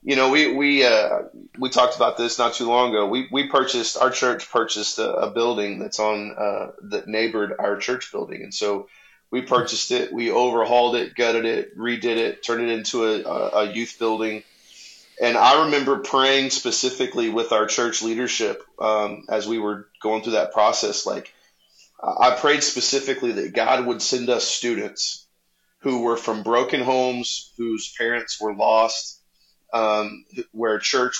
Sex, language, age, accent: male, English, 30-49, American